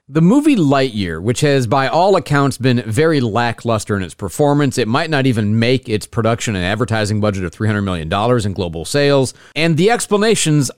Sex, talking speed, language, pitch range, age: male, 185 wpm, English, 120-150 Hz, 40-59